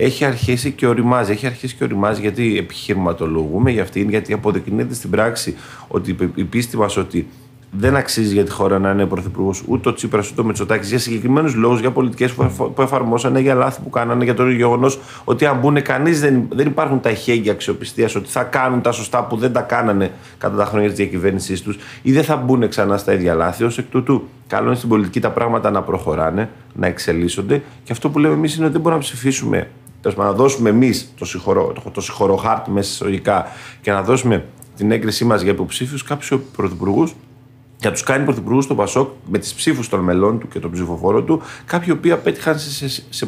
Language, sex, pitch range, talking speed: Greek, male, 105-135 Hz, 205 wpm